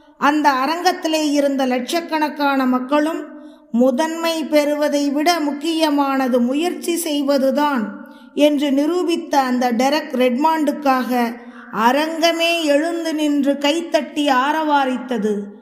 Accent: native